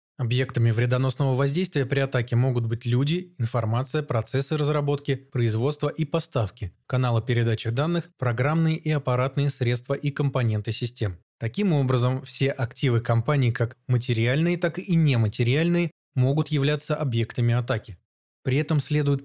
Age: 20-39